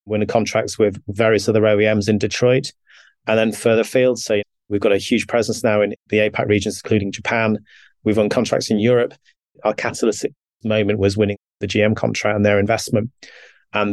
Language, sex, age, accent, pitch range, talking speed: English, male, 30-49, British, 105-115 Hz, 180 wpm